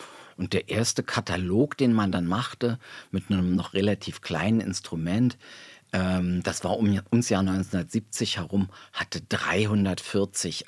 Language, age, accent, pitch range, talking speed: German, 50-69, German, 95-115 Hz, 135 wpm